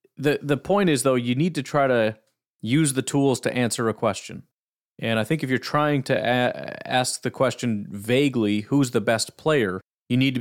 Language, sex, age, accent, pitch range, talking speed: English, male, 30-49, American, 115-135 Hz, 210 wpm